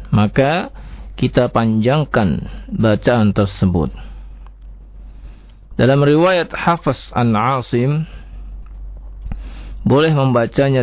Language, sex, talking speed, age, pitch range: Indonesian, male, 65 wpm, 40-59, 110-140 Hz